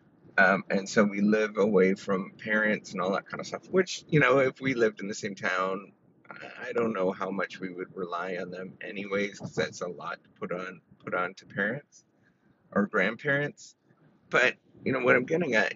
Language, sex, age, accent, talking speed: English, male, 30-49, American, 210 wpm